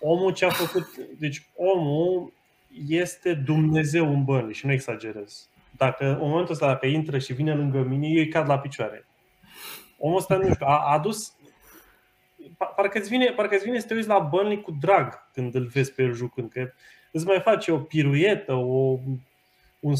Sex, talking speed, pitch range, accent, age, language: male, 175 wpm, 125-160 Hz, native, 20-39, Romanian